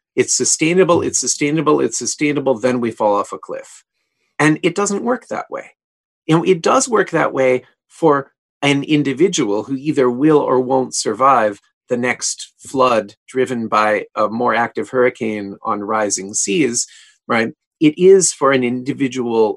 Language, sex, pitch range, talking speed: English, male, 120-155 Hz, 160 wpm